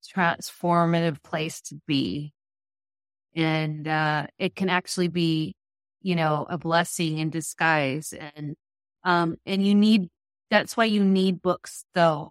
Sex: female